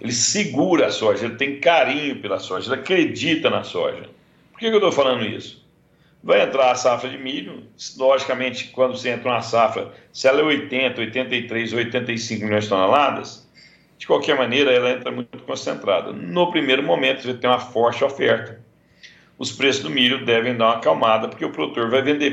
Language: Portuguese